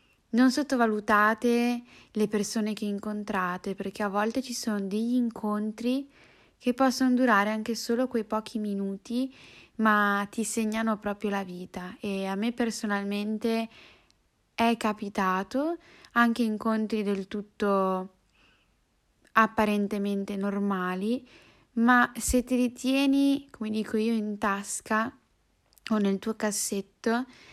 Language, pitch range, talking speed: Italian, 205-235 Hz, 115 wpm